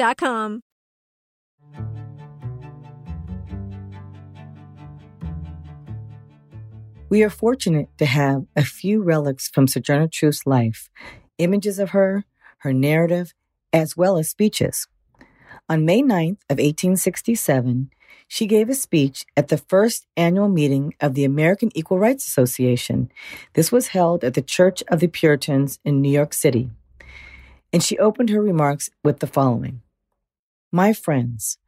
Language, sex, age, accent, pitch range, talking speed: English, female, 40-59, American, 125-175 Hz, 120 wpm